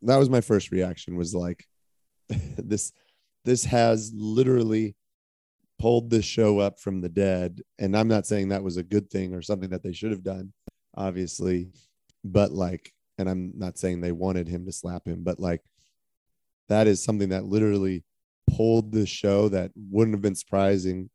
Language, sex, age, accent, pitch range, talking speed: English, male, 30-49, American, 90-105 Hz, 175 wpm